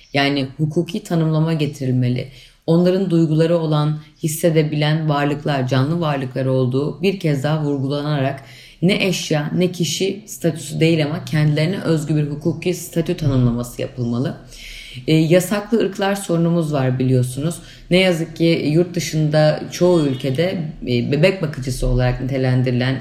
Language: Turkish